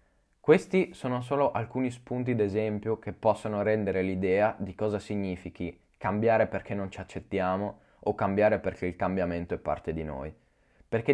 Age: 20-39